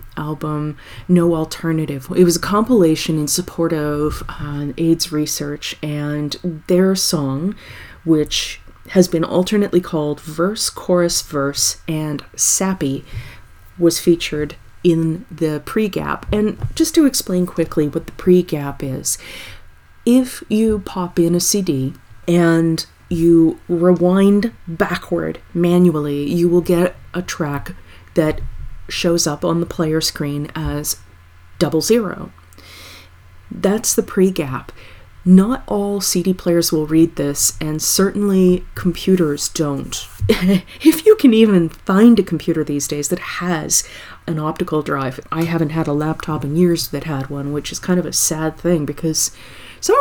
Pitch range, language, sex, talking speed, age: 150-180 Hz, English, female, 135 wpm, 30-49